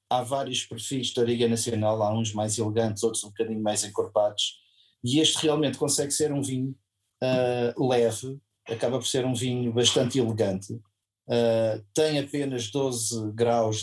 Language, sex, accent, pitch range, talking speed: Portuguese, male, Portuguese, 115-140 Hz, 150 wpm